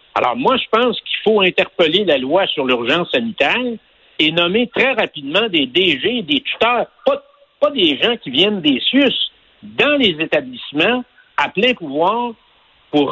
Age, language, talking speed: 60-79, French, 160 wpm